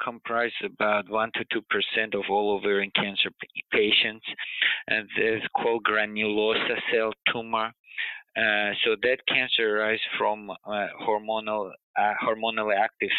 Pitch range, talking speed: 95-110 Hz, 125 wpm